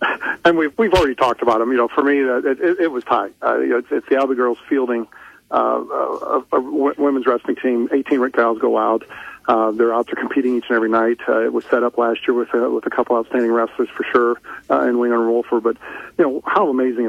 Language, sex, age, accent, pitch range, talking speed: English, male, 50-69, American, 115-140 Hz, 265 wpm